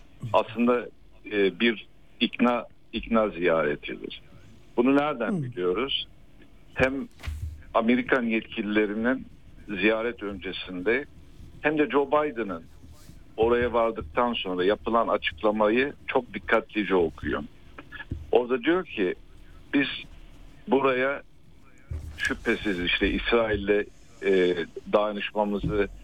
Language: Turkish